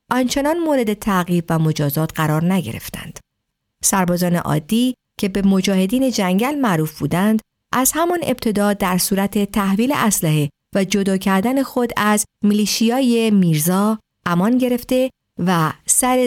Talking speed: 120 wpm